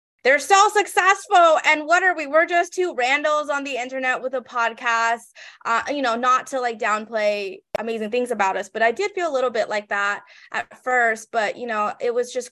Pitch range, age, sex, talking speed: 215-270 Hz, 20-39, female, 215 wpm